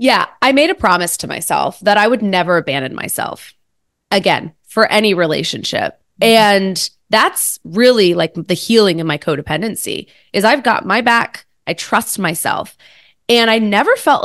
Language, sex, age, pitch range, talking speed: English, female, 20-39, 175-235 Hz, 160 wpm